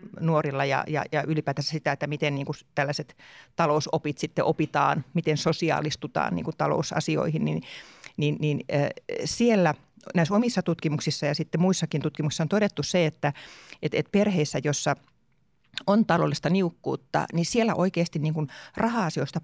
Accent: native